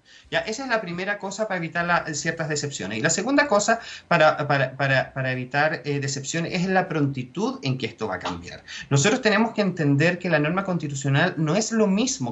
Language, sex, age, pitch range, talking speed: Spanish, male, 30-49, 145-205 Hz, 195 wpm